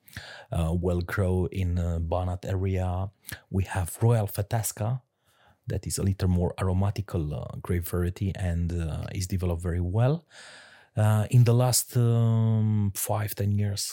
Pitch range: 90-110 Hz